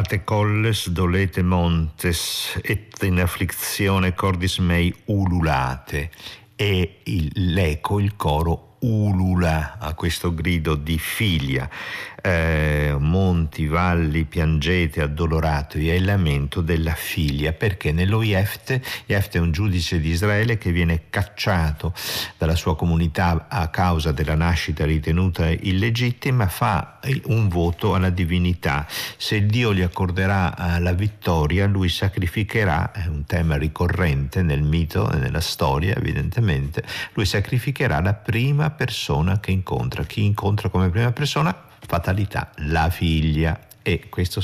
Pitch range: 80-105 Hz